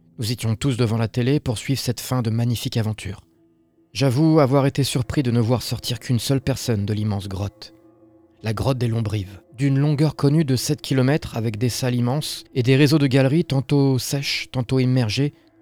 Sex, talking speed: male, 190 wpm